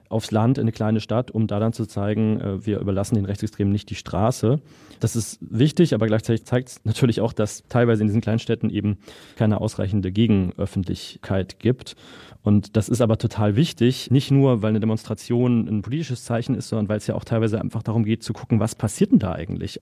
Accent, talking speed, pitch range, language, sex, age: German, 210 wpm, 110-130 Hz, German, male, 30-49